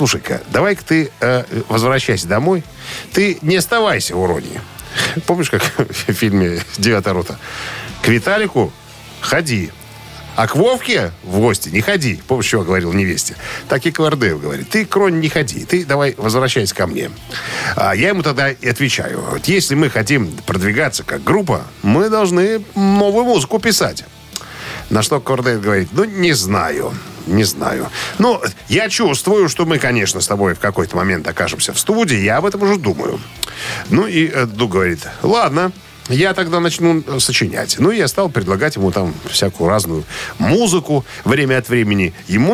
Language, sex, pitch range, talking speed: Russian, male, 105-175 Hz, 160 wpm